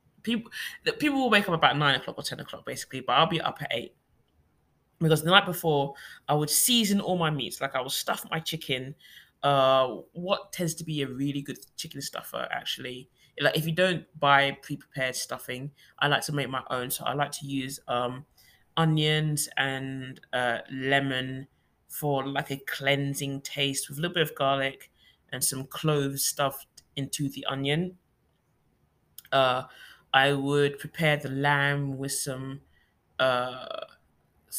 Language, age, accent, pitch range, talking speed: English, 20-39, British, 135-160 Hz, 165 wpm